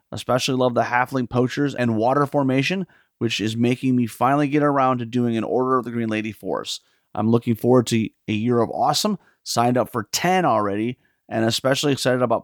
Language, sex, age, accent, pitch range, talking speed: English, male, 30-49, American, 115-135 Hz, 200 wpm